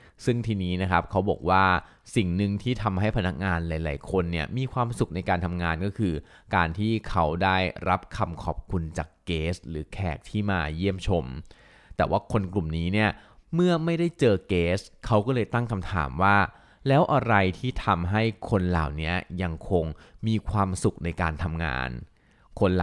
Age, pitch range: 20-39, 85-105 Hz